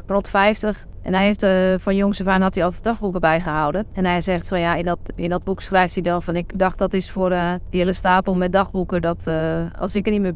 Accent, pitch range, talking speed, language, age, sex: Dutch, 175-200 Hz, 270 wpm, Dutch, 30-49, female